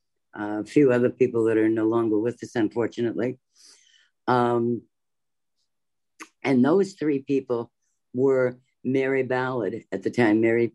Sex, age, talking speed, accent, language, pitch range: female, 50-69, 130 wpm, American, English, 115-145 Hz